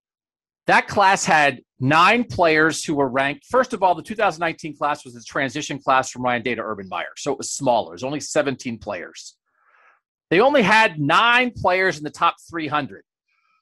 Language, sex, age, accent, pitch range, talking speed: English, male, 40-59, American, 145-215 Hz, 180 wpm